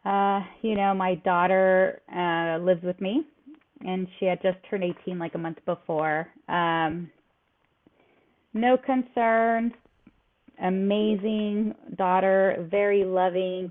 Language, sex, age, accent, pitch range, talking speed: English, female, 30-49, American, 180-215 Hz, 115 wpm